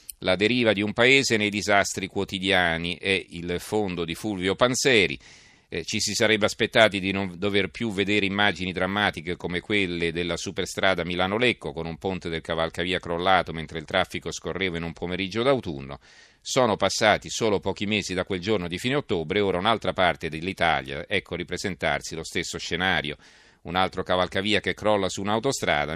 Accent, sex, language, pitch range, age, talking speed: native, male, Italian, 85-105 Hz, 40-59, 165 wpm